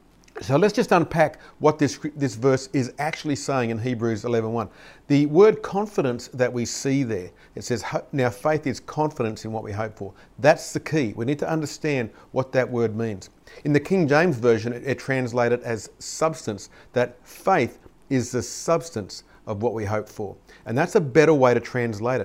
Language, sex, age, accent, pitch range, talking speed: English, male, 50-69, Australian, 115-145 Hz, 190 wpm